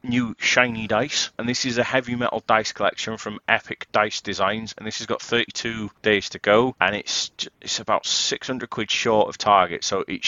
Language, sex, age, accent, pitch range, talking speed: English, male, 30-49, British, 105-120 Hz, 200 wpm